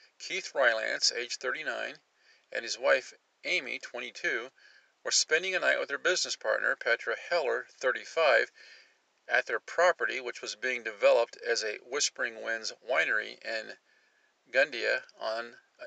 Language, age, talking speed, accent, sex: English, 50-69, 130 wpm, American, male